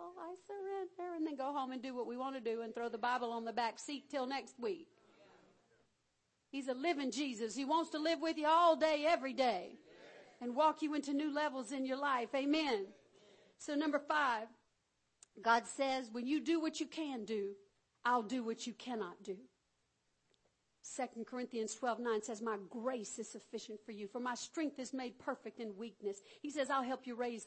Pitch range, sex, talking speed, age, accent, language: 230-315 Hz, female, 200 wpm, 50-69, American, English